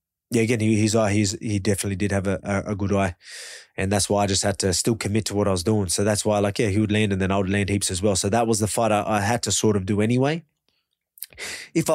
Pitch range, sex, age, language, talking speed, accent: 100-120 Hz, male, 20-39, English, 280 wpm, Australian